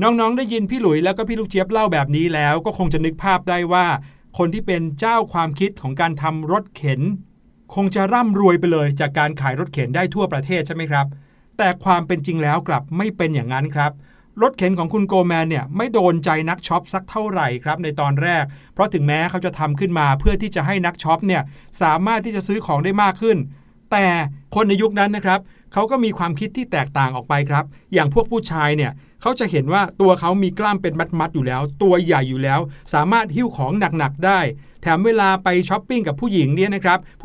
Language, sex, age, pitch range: Thai, male, 60-79, 155-205 Hz